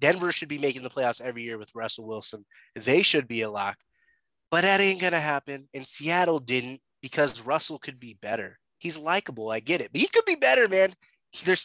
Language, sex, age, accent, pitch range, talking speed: English, male, 20-39, American, 130-185 Hz, 215 wpm